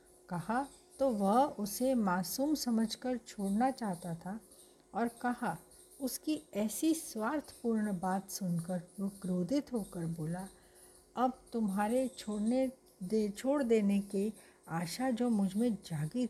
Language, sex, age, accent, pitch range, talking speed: Hindi, female, 60-79, native, 180-235 Hz, 120 wpm